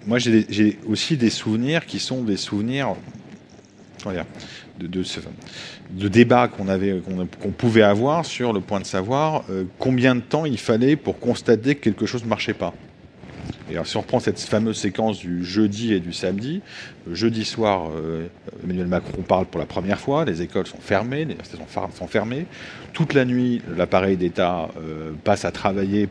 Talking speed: 185 wpm